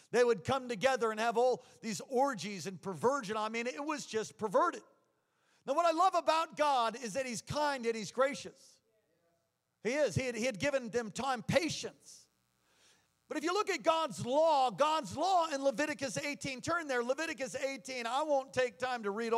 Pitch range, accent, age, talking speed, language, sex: 185-255 Hz, American, 50-69, 190 wpm, English, male